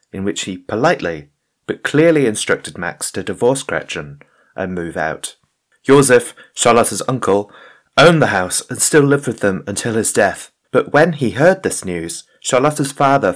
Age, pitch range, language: 30-49, 100-130 Hz, English